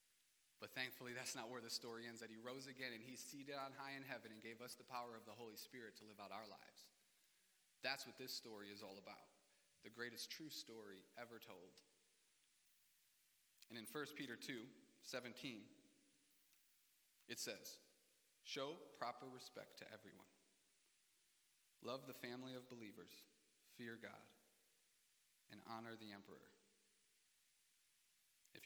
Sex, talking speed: male, 150 wpm